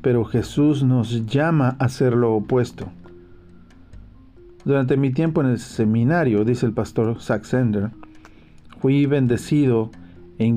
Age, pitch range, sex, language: 50-69, 105-130 Hz, male, Spanish